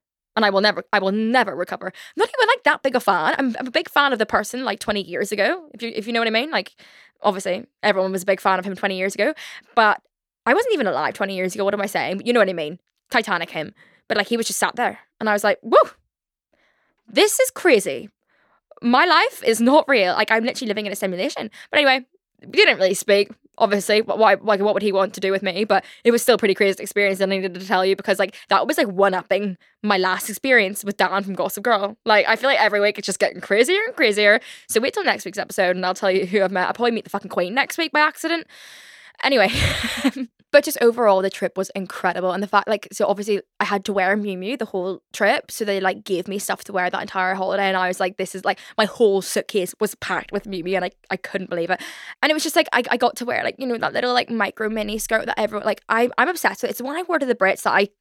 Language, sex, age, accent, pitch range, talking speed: English, female, 10-29, British, 195-245 Hz, 275 wpm